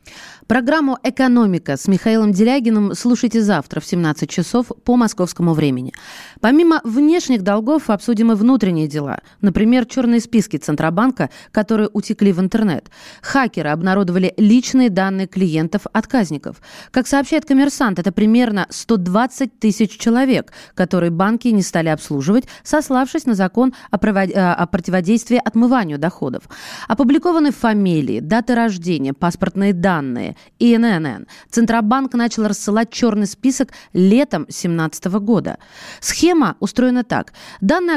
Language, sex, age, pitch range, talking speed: Russian, female, 20-39, 185-250 Hz, 115 wpm